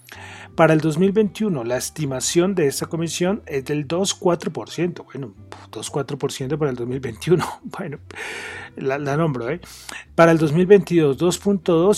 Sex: male